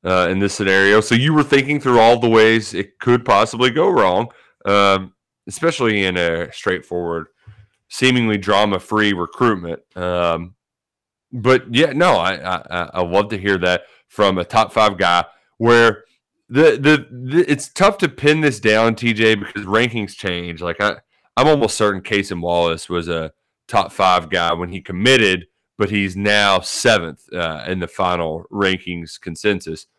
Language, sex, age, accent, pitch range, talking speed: English, male, 30-49, American, 95-125 Hz, 160 wpm